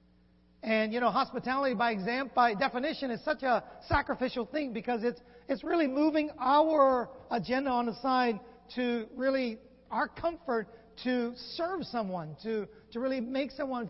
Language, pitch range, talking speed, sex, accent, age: English, 215-280 Hz, 150 wpm, male, American, 40-59